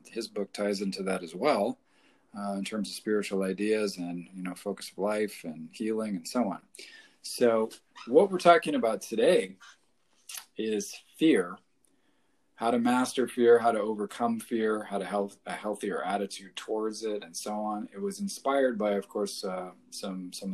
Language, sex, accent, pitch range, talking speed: English, male, American, 95-110 Hz, 175 wpm